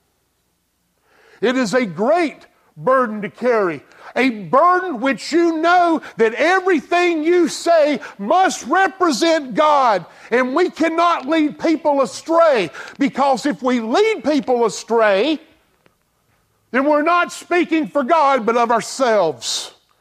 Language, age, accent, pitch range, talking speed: English, 50-69, American, 245-330 Hz, 120 wpm